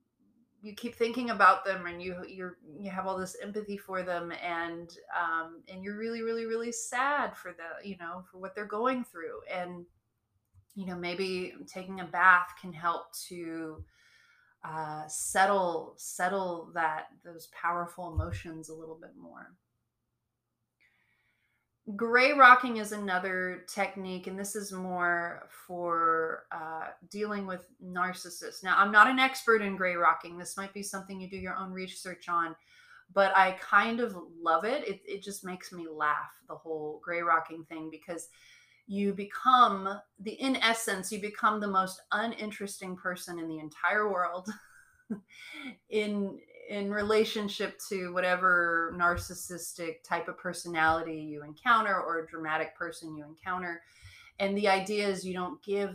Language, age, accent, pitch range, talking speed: English, 30-49, American, 170-215 Hz, 150 wpm